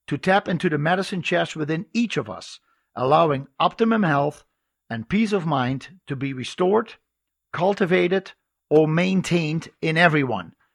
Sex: male